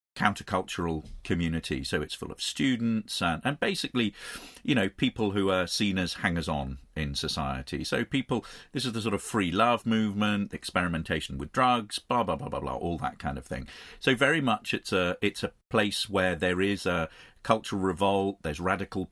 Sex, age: male, 40-59